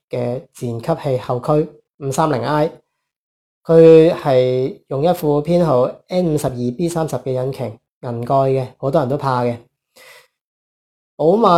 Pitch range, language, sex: 130-165 Hz, Chinese, male